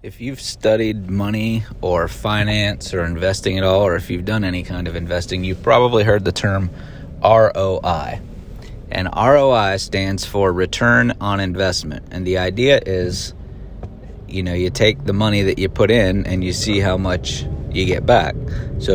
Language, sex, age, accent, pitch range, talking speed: English, male, 30-49, American, 95-125 Hz, 170 wpm